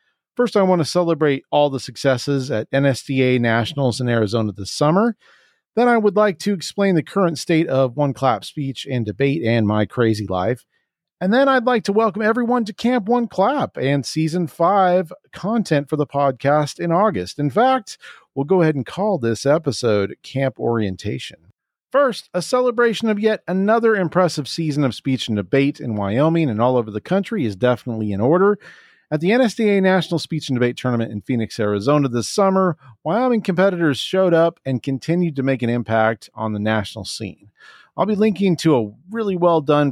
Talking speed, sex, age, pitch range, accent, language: 185 wpm, male, 40-59, 115-180 Hz, American, English